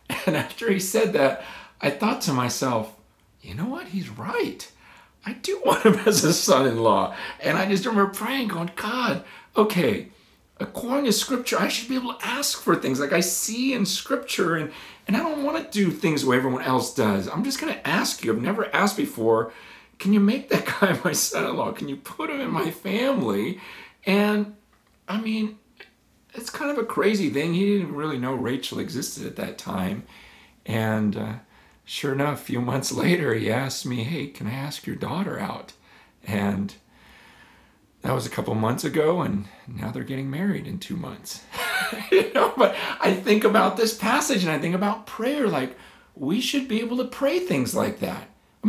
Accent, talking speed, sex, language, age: American, 195 wpm, male, English, 40-59